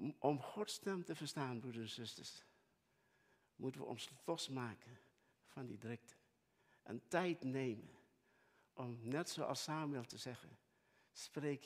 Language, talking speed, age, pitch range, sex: Dutch, 130 wpm, 60-79, 125-165 Hz, male